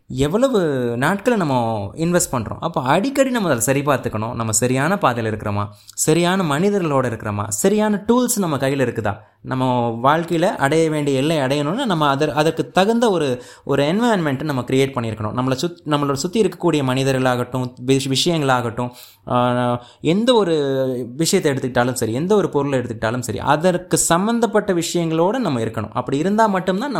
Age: 20-39